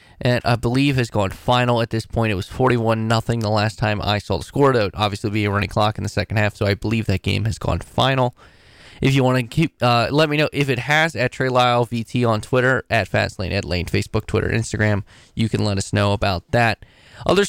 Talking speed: 245 wpm